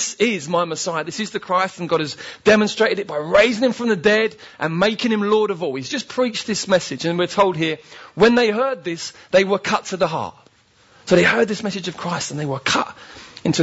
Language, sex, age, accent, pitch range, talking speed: English, male, 40-59, British, 150-215 Hz, 245 wpm